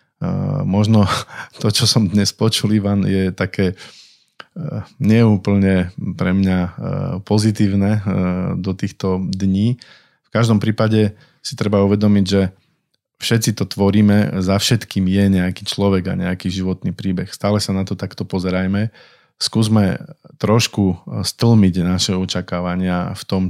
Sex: male